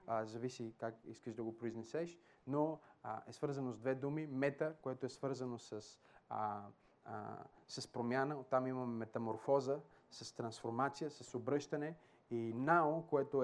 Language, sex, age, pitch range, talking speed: Bulgarian, male, 30-49, 130-170 Hz, 145 wpm